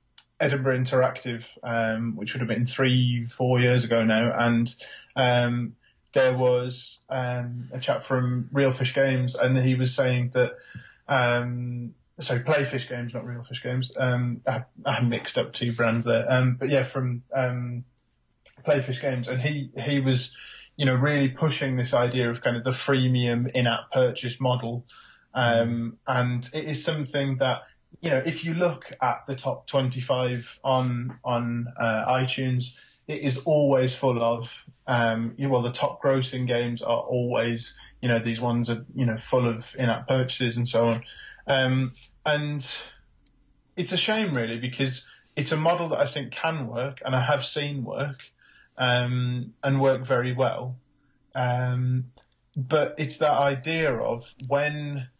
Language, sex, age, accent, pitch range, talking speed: English, male, 20-39, British, 120-135 Hz, 160 wpm